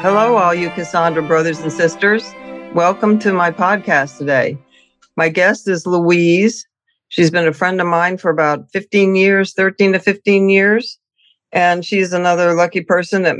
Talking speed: 160 wpm